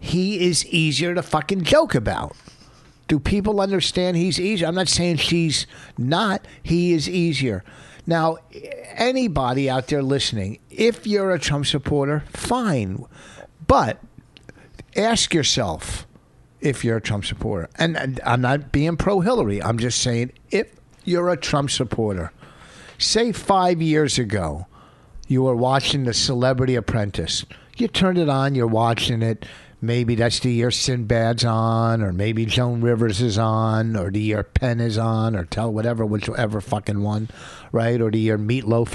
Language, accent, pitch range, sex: English, American, 110-155 Hz, male